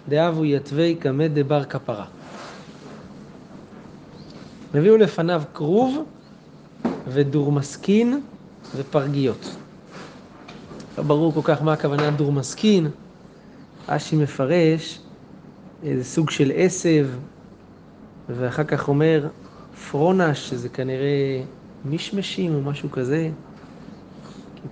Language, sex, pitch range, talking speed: Hebrew, male, 140-190 Hz, 85 wpm